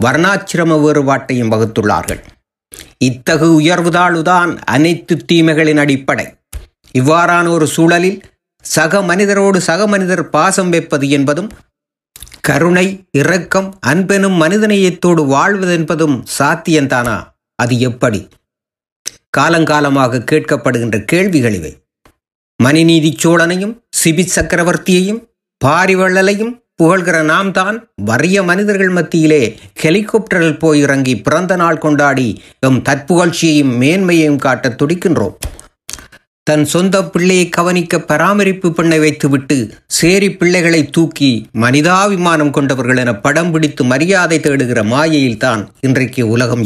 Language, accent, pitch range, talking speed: Tamil, native, 135-180 Hz, 95 wpm